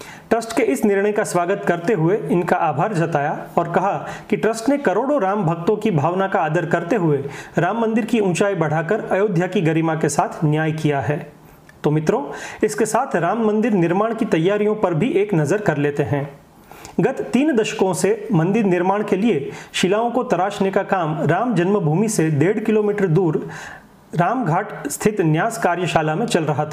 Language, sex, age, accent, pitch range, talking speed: Hindi, male, 40-59, native, 165-215 Hz, 180 wpm